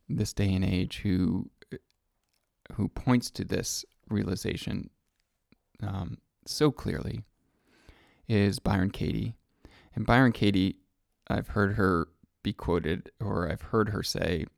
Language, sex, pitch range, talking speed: English, male, 95-115 Hz, 120 wpm